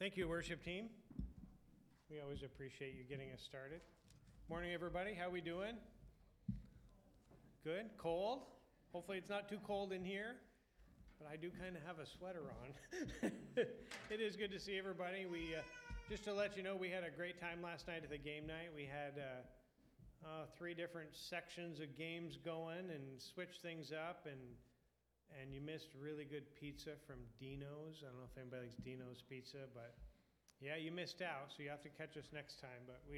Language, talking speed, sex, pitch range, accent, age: English, 190 wpm, male, 140-175 Hz, American, 40-59